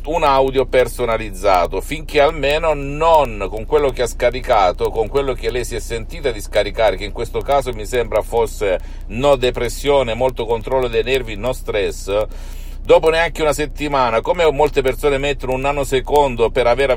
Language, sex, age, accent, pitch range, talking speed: Italian, male, 50-69, native, 120-150 Hz, 165 wpm